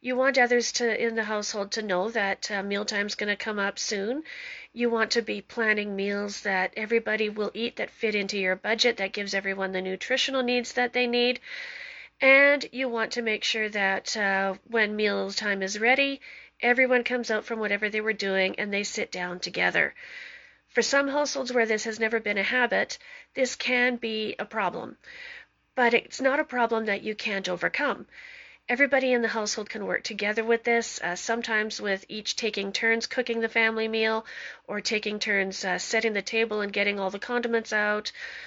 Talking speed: 190 wpm